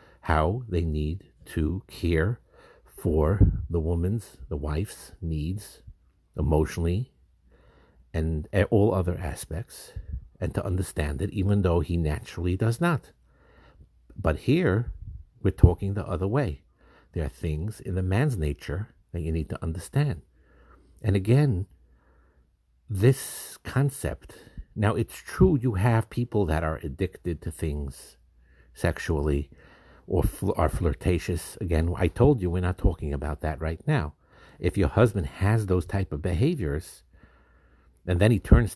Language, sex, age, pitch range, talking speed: English, male, 60-79, 75-100 Hz, 135 wpm